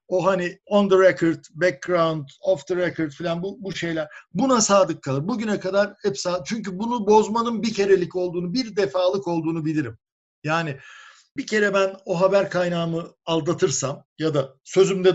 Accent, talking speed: Turkish, 160 wpm